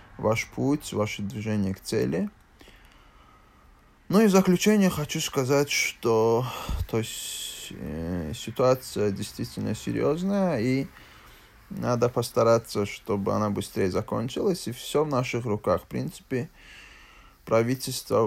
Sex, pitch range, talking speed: male, 100-130 Hz, 110 wpm